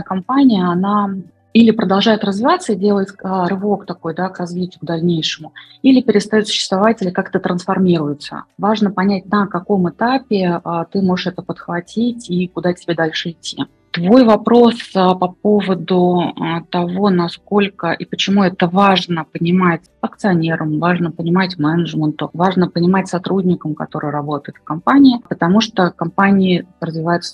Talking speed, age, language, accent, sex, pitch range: 125 wpm, 30-49, Russian, native, female, 170-200 Hz